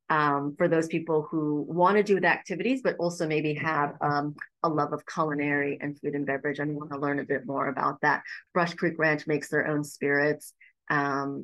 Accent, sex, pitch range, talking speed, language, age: American, female, 150-180 Hz, 210 wpm, English, 30-49